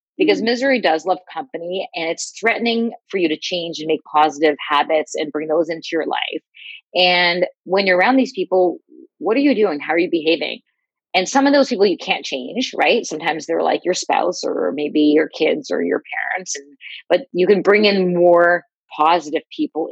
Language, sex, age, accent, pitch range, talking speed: English, female, 30-49, American, 155-200 Hz, 195 wpm